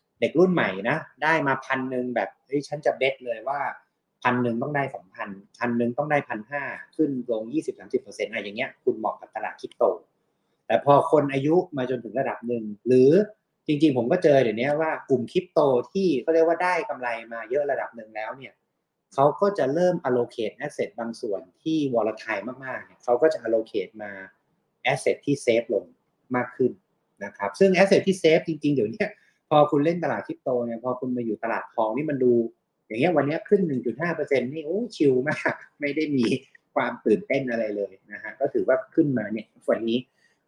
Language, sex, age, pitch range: Thai, male, 30-49, 120-160 Hz